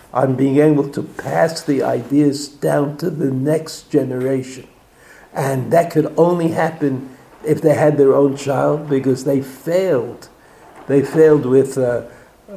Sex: male